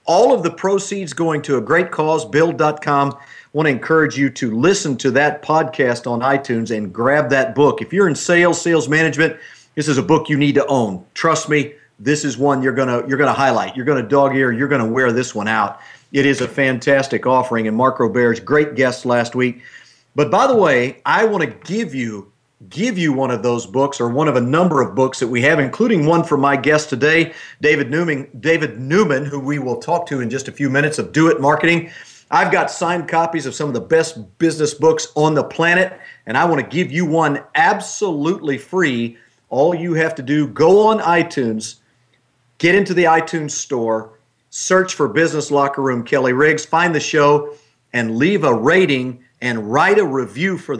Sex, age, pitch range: male, 50-69, 125-160 Hz